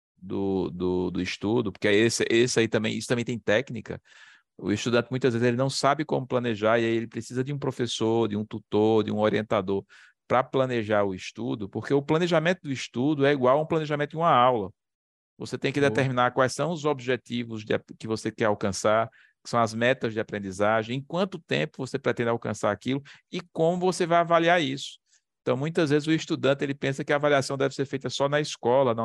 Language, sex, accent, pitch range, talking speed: Portuguese, male, Brazilian, 115-145 Hz, 210 wpm